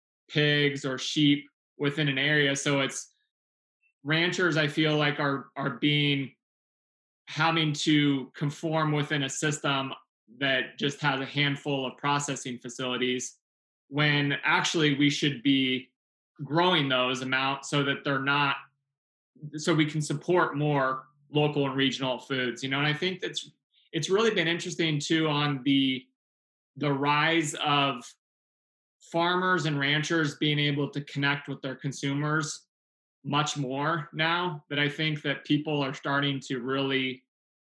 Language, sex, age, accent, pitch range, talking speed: English, male, 20-39, American, 135-155 Hz, 140 wpm